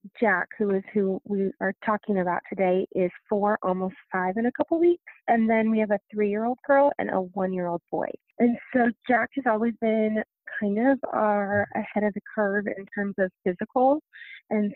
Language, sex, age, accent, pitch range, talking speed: English, female, 30-49, American, 190-235 Hz, 185 wpm